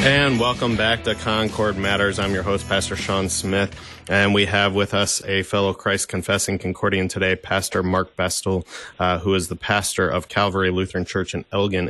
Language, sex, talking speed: English, male, 180 wpm